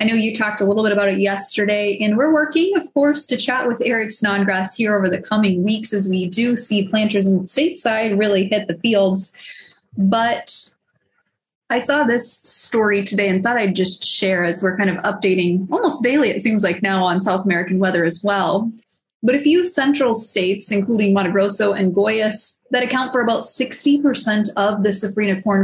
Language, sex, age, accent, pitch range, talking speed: English, female, 20-39, American, 195-245 Hz, 195 wpm